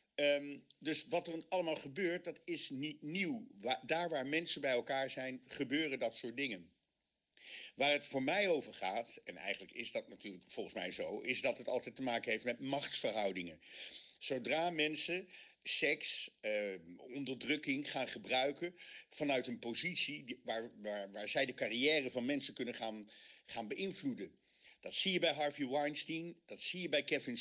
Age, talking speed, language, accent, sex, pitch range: 50-69, 160 wpm, Dutch, Dutch, male, 130-170 Hz